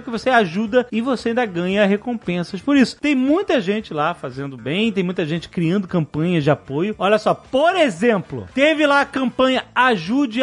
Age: 40-59